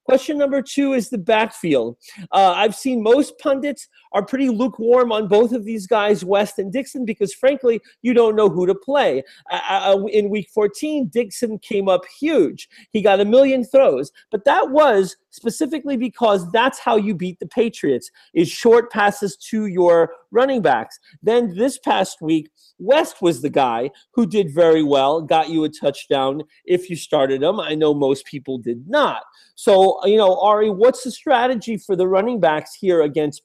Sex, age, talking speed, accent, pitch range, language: male, 40-59, 180 wpm, American, 185-255 Hz, English